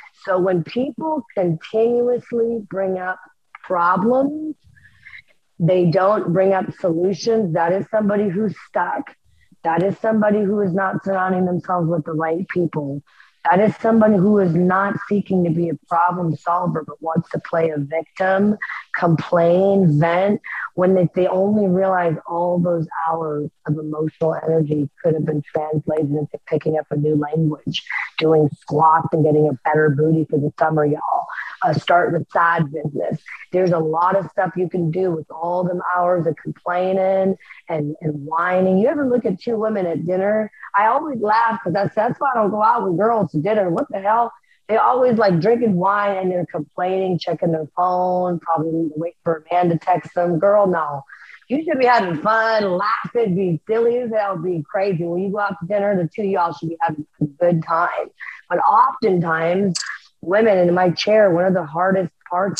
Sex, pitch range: female, 160-200 Hz